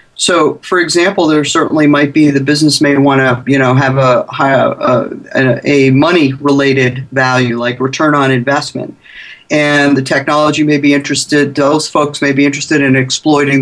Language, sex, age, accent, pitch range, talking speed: English, male, 50-69, American, 135-155 Hz, 165 wpm